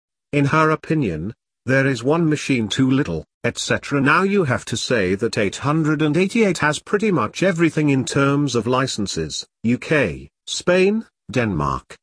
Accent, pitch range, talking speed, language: British, 105-155 Hz, 140 wpm, English